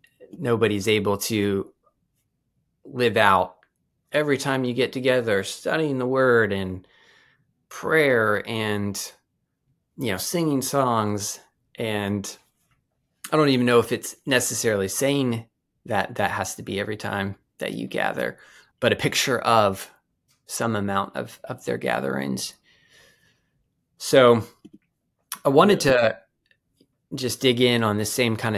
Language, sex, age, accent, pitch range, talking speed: English, male, 20-39, American, 100-120 Hz, 125 wpm